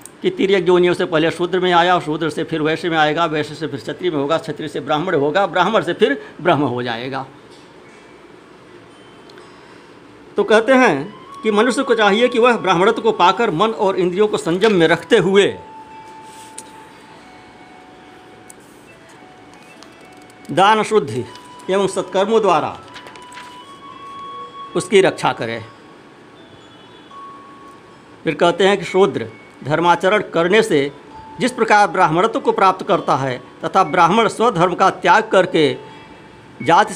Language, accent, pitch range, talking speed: Hindi, native, 145-215 Hz, 130 wpm